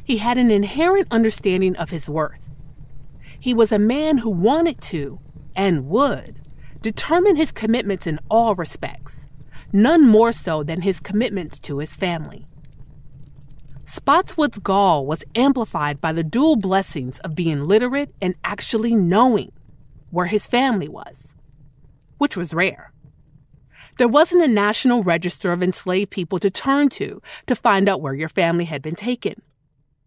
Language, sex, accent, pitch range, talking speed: English, female, American, 155-225 Hz, 145 wpm